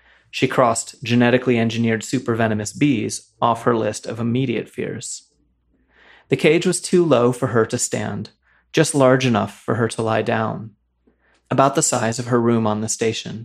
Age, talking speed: 30-49, 170 wpm